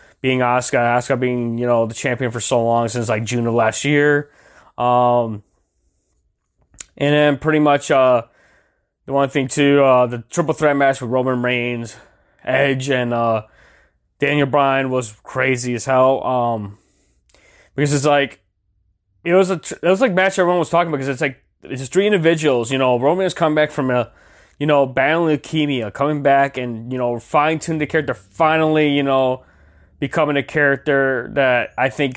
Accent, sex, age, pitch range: American, male, 20-39, 120-145 Hz